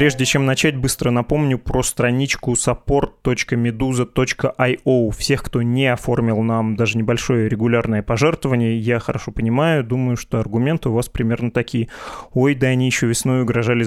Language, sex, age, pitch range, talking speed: Russian, male, 20-39, 120-140 Hz, 145 wpm